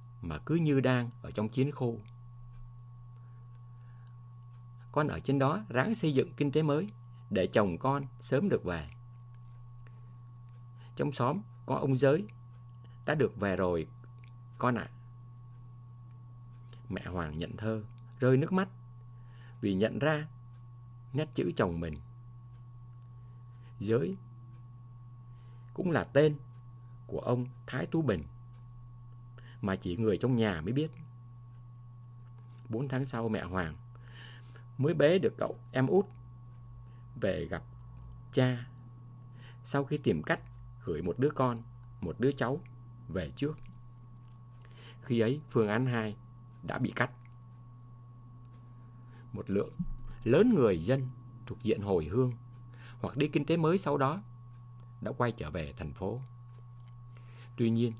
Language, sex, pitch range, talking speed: English, male, 120-125 Hz, 130 wpm